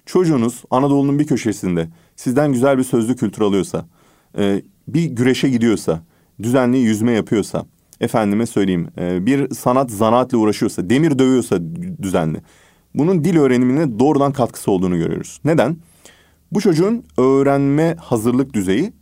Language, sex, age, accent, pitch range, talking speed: Turkish, male, 30-49, native, 100-140 Hz, 120 wpm